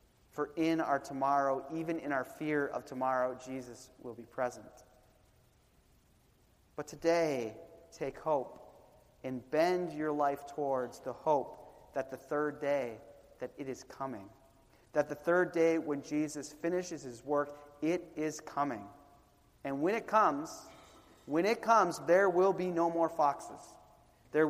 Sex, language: male, English